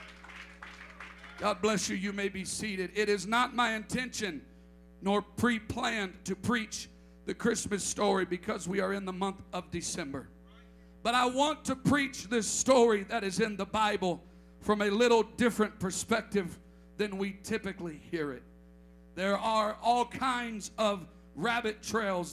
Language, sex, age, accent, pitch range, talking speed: English, male, 50-69, American, 155-220 Hz, 150 wpm